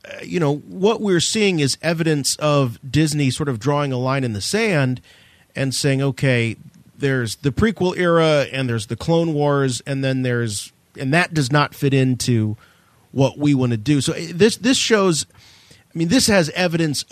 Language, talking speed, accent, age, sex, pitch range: English, 180 wpm, American, 40-59, male, 115-150 Hz